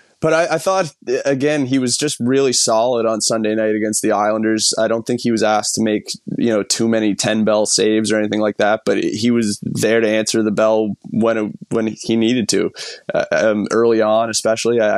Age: 20-39